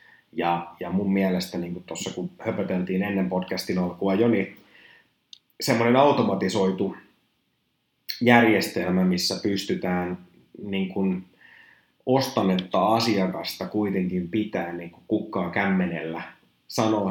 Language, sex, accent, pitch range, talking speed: Finnish, male, native, 90-105 Hz, 95 wpm